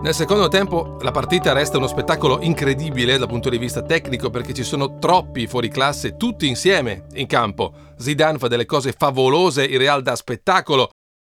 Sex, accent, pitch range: male, native, 125-165 Hz